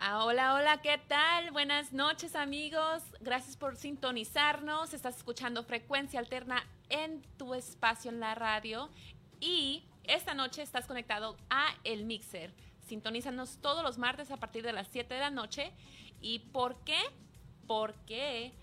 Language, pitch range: English, 225-285 Hz